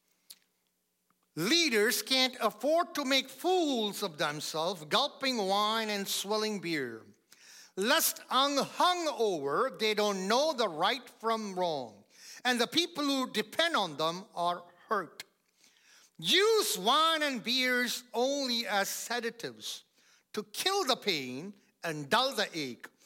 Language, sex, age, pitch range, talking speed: English, male, 50-69, 140-215 Hz, 120 wpm